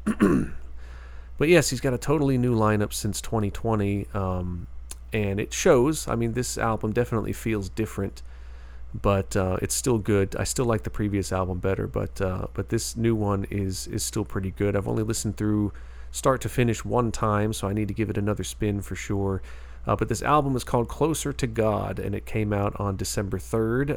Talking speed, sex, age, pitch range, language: 200 wpm, male, 40-59, 95-115 Hz, English